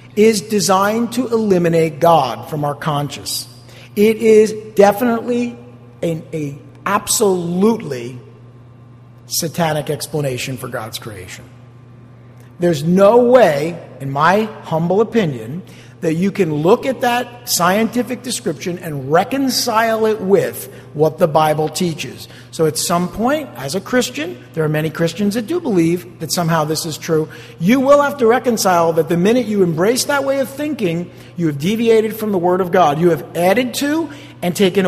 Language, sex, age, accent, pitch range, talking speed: English, male, 50-69, American, 135-205 Hz, 150 wpm